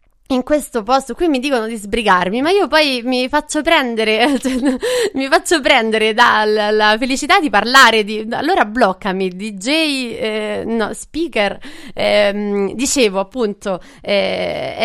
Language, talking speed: Italian, 130 wpm